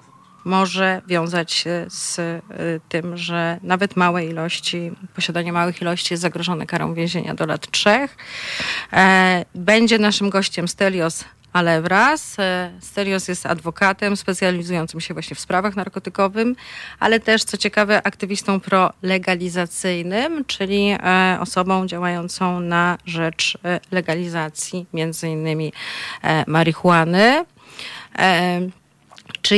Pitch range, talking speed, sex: 175-210 Hz, 95 wpm, female